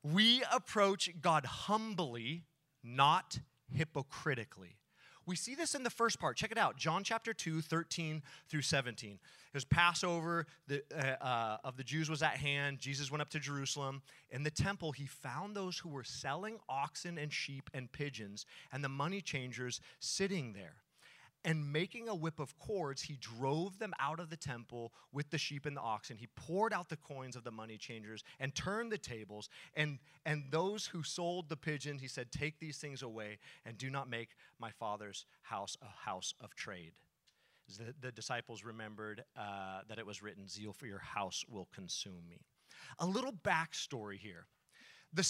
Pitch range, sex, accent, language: 130-185 Hz, male, American, English